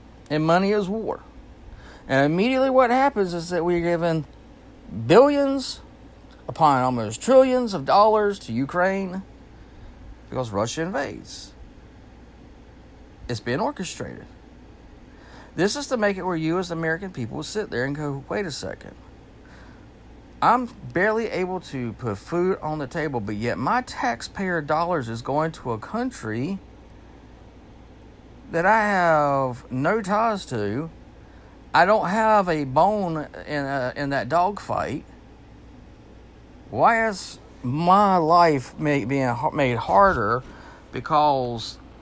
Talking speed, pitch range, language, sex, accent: 125 wpm, 120-185 Hz, English, male, American